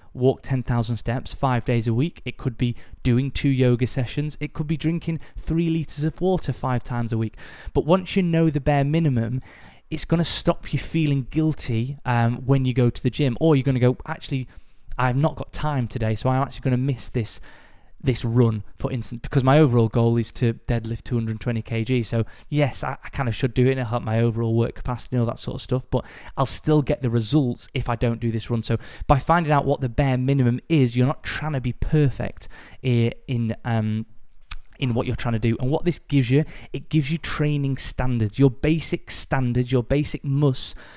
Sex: male